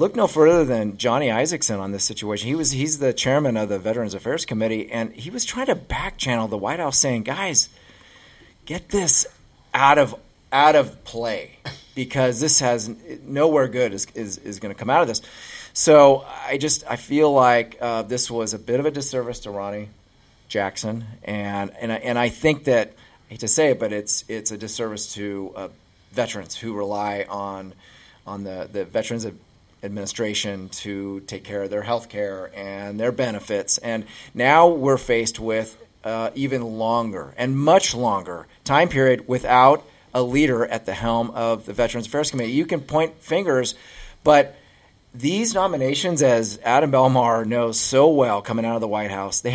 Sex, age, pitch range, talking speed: male, 30-49, 105-135 Hz, 185 wpm